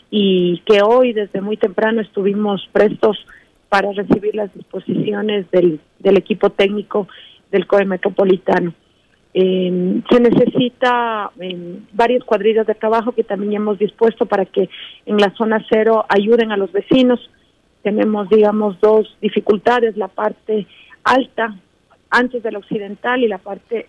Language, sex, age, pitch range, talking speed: Spanish, female, 40-59, 200-230 Hz, 140 wpm